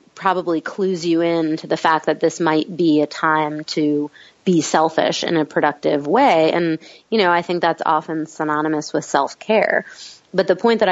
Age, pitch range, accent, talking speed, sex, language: 30-49, 155-180 Hz, American, 185 wpm, female, English